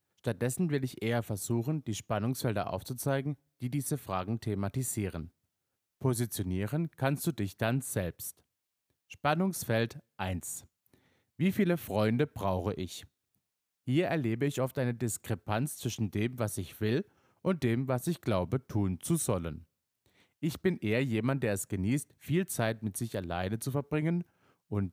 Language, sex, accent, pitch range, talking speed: German, male, German, 100-135 Hz, 140 wpm